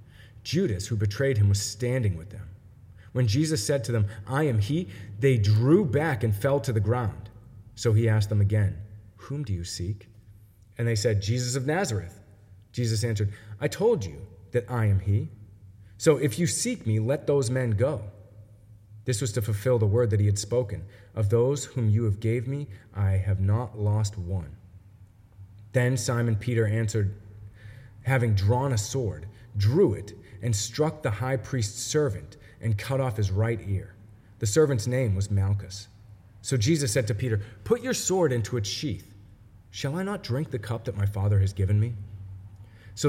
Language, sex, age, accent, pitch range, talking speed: English, male, 30-49, American, 100-125 Hz, 180 wpm